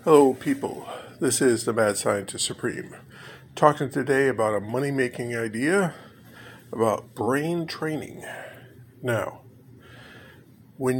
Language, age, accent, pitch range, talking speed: English, 50-69, American, 120-140 Hz, 110 wpm